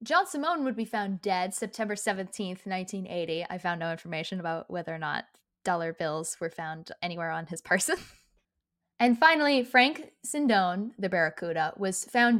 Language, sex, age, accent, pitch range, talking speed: English, female, 10-29, American, 185-255 Hz, 160 wpm